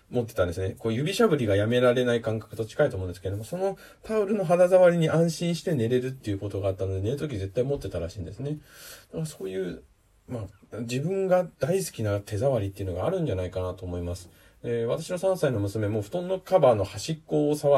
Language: Japanese